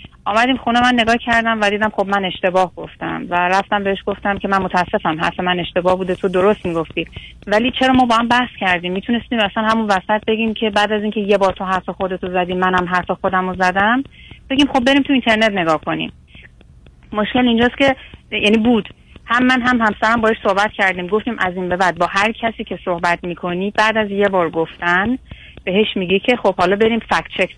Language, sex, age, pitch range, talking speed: Persian, female, 30-49, 180-220 Hz, 205 wpm